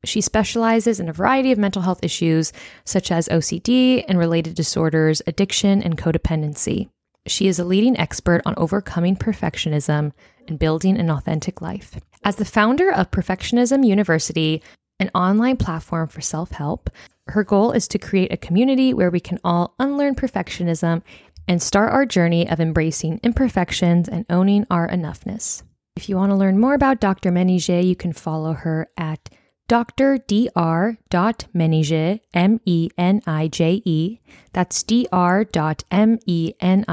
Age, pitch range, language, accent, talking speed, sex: 20-39, 165-210 Hz, English, American, 150 wpm, female